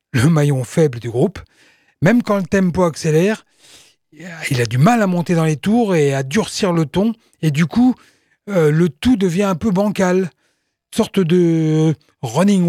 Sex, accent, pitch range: male, French, 135-190 Hz